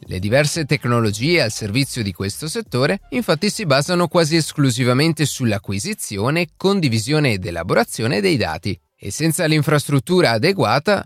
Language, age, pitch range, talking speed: Italian, 30-49, 110-175 Hz, 125 wpm